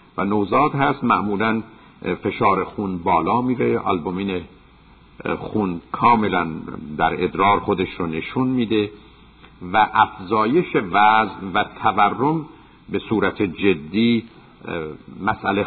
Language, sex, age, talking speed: Persian, male, 50-69, 100 wpm